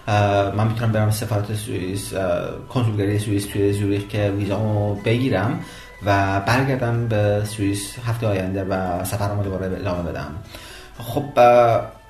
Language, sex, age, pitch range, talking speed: Persian, male, 30-49, 100-120 Hz, 120 wpm